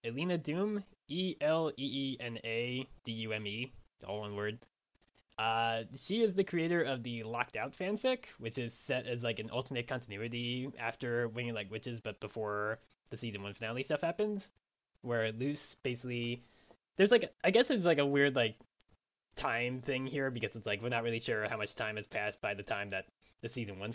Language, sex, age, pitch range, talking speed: English, male, 20-39, 110-145 Hz, 200 wpm